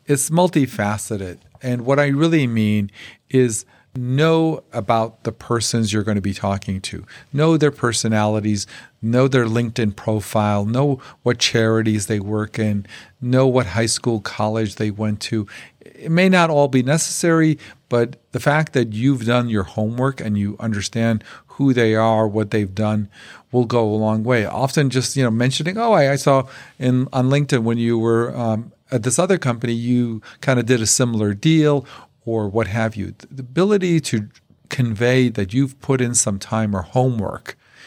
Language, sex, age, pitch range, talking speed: English, male, 50-69, 110-140 Hz, 175 wpm